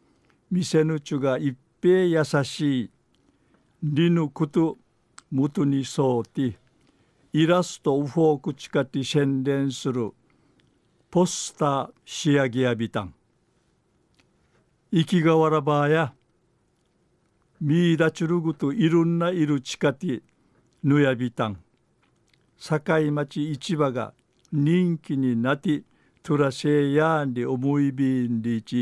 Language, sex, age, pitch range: Japanese, male, 60-79, 125-155 Hz